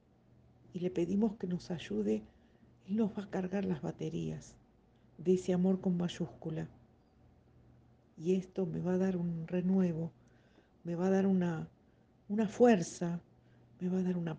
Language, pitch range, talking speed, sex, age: Spanish, 120-185 Hz, 155 wpm, female, 60-79